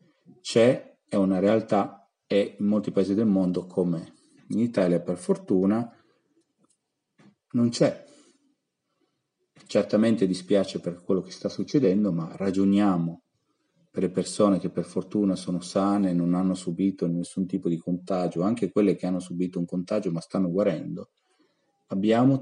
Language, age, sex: Italian, 40-59, male